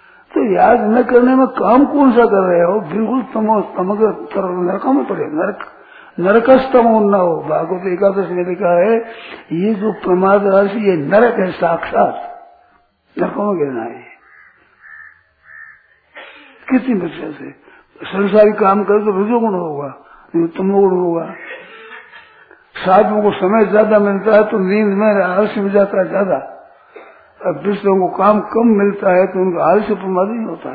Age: 60-79